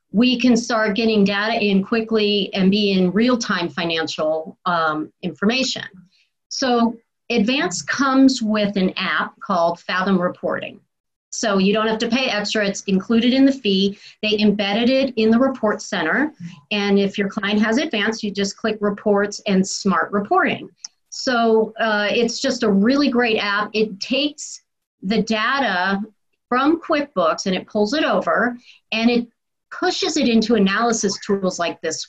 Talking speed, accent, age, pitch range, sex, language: 155 wpm, American, 40-59, 195-230 Hz, female, English